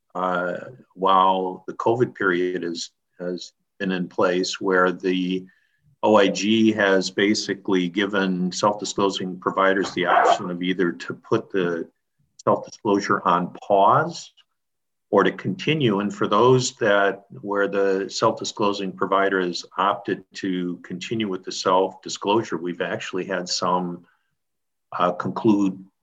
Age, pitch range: 50-69, 90-100 Hz